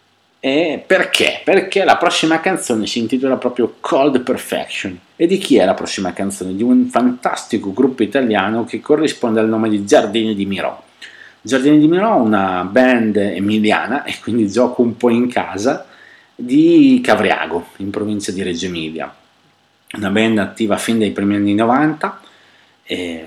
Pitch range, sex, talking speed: 100-125 Hz, male, 155 wpm